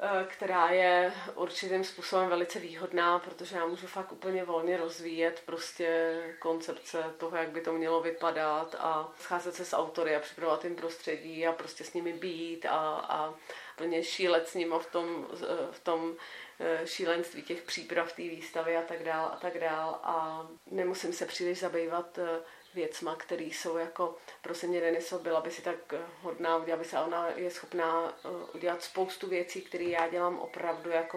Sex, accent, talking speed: female, native, 165 wpm